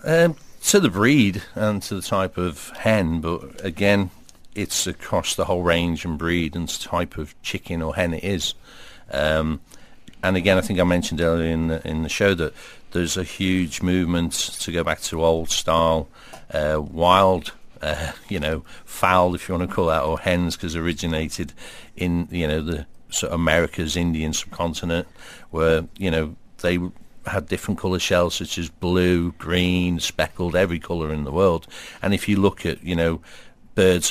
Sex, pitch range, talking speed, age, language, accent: male, 80-95 Hz, 180 wpm, 50-69, English, British